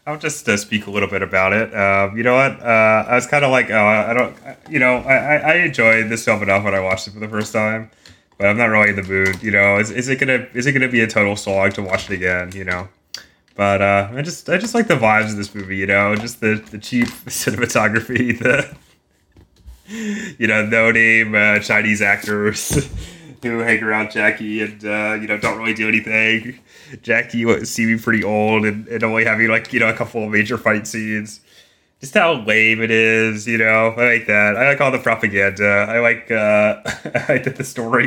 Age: 20-39